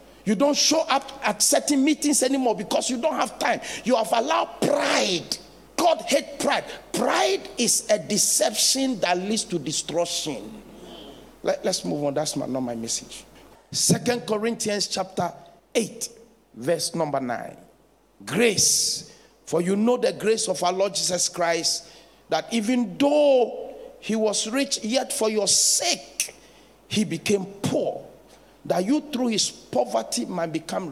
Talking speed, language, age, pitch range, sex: 140 wpm, English, 50-69, 165-235 Hz, male